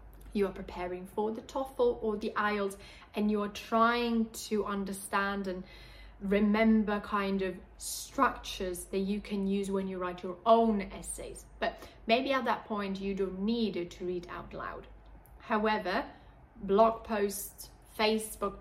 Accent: British